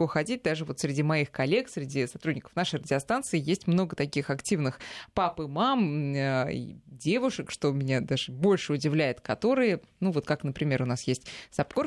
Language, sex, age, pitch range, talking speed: Russian, female, 20-39, 145-190 Hz, 160 wpm